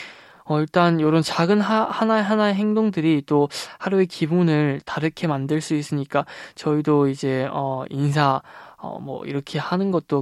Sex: male